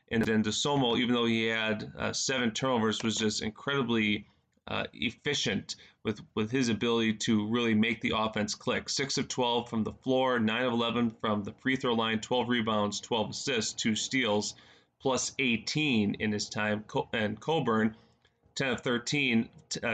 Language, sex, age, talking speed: English, male, 20-39, 165 wpm